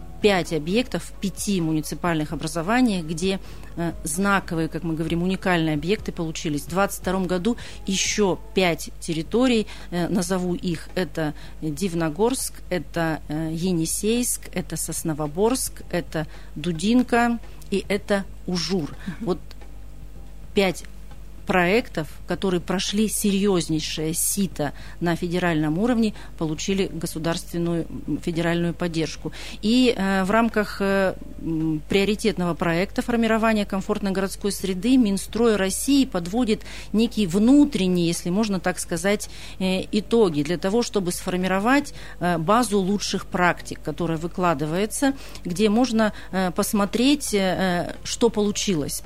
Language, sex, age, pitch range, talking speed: Russian, female, 40-59, 165-205 Hz, 100 wpm